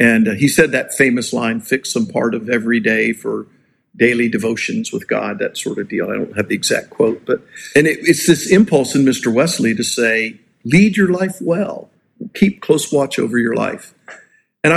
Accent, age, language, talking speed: American, 50-69, English, 200 wpm